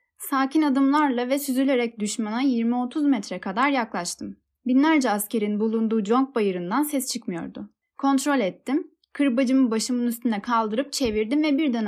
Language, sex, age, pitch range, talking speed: Turkish, female, 10-29, 225-275 Hz, 125 wpm